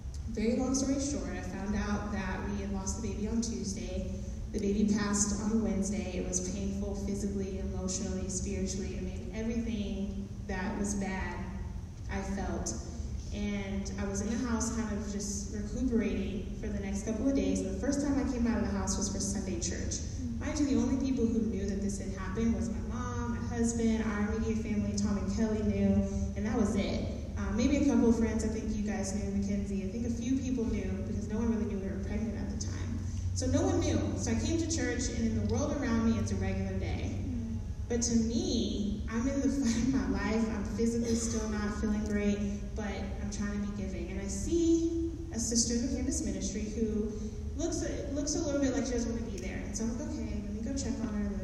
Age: 20-39